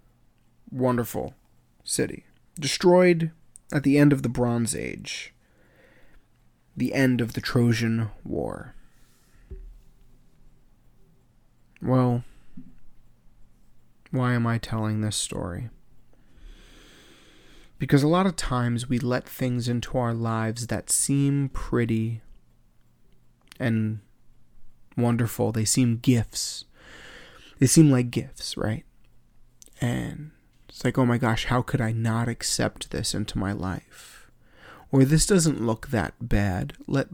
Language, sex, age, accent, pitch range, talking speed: English, male, 30-49, American, 110-130 Hz, 110 wpm